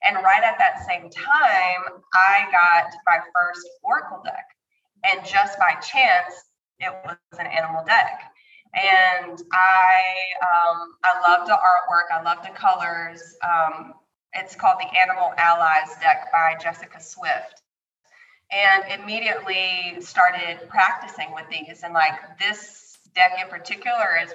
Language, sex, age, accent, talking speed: English, female, 20-39, American, 135 wpm